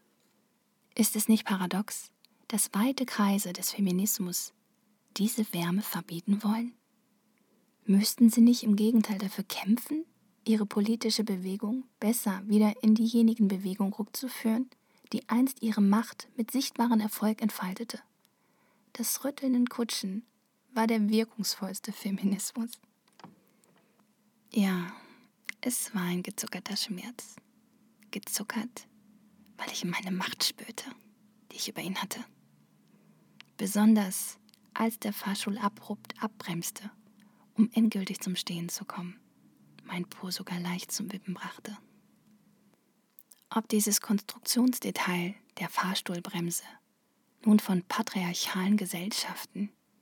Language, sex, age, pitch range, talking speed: German, female, 20-39, 195-225 Hz, 105 wpm